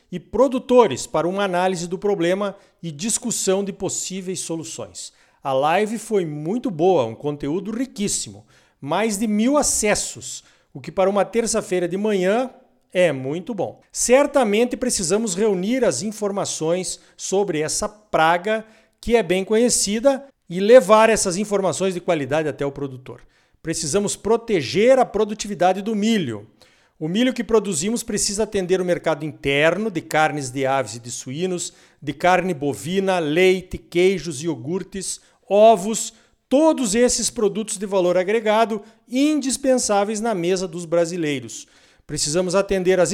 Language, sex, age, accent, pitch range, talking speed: Portuguese, male, 50-69, Brazilian, 170-225 Hz, 135 wpm